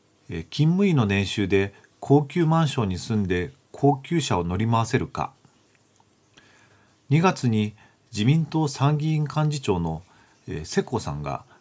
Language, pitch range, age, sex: Japanese, 100-145 Hz, 40-59, male